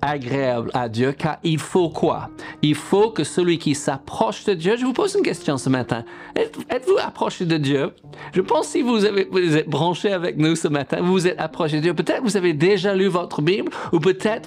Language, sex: French, male